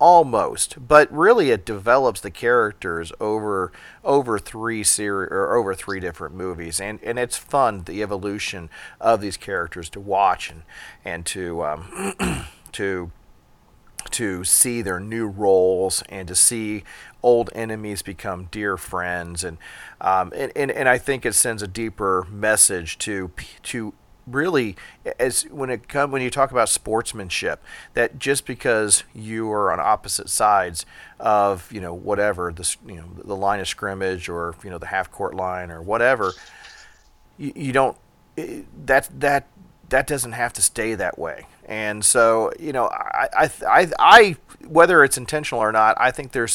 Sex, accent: male, American